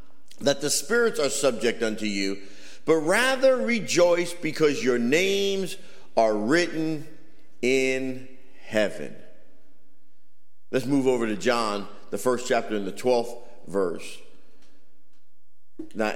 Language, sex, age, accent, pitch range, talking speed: English, male, 50-69, American, 120-170 Hz, 110 wpm